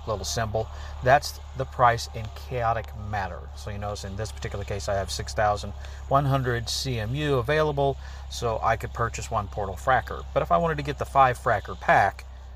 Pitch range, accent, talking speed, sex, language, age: 90-120 Hz, American, 175 wpm, male, English, 40-59